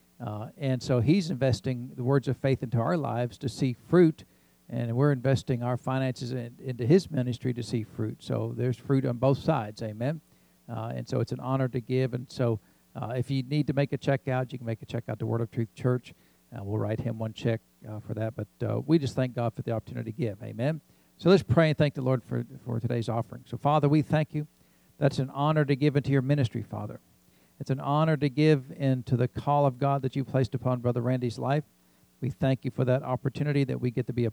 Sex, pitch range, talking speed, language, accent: male, 115-135 Hz, 245 wpm, English, American